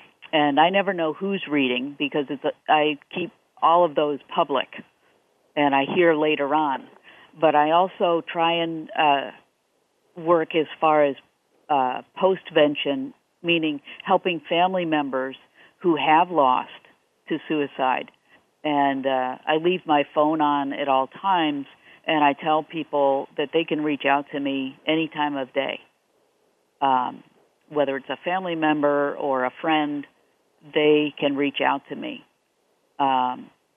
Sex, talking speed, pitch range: female, 145 wpm, 140-160 Hz